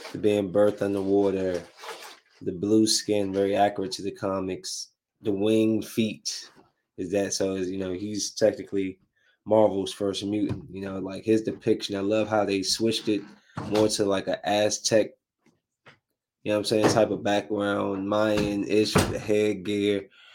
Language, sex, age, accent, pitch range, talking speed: English, male, 20-39, American, 100-125 Hz, 155 wpm